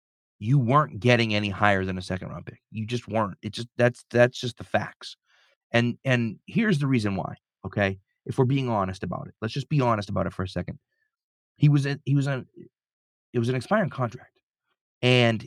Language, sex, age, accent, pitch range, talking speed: English, male, 30-49, American, 105-140 Hz, 210 wpm